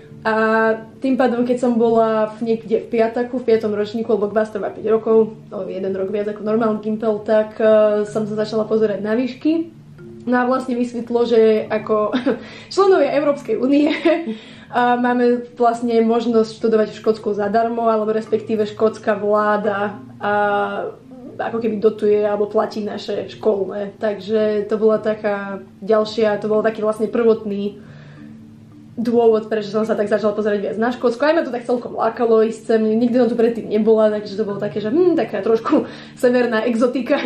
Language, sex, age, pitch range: Slovak, female, 20-39, 215-235 Hz